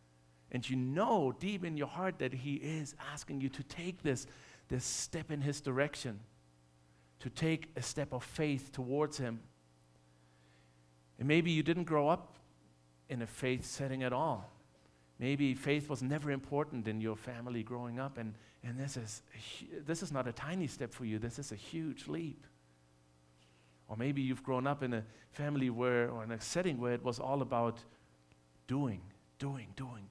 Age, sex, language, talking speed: 50-69, male, English, 175 wpm